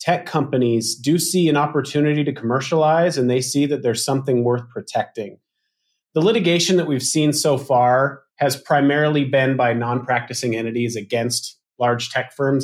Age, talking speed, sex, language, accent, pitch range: 30-49, 155 wpm, male, English, American, 125-150 Hz